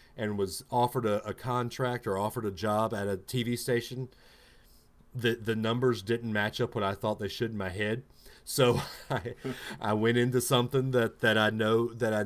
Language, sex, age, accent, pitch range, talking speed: English, male, 40-59, American, 105-130 Hz, 195 wpm